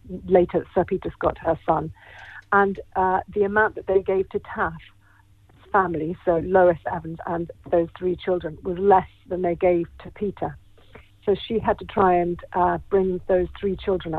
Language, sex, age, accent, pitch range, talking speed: English, female, 50-69, British, 170-195 Hz, 175 wpm